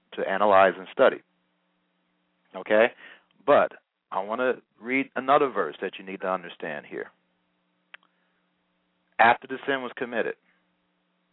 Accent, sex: American, male